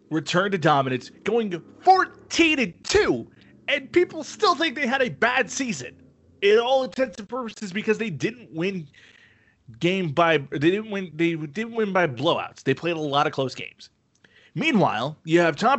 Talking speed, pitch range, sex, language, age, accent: 175 wpm, 140-215 Hz, male, English, 30-49, American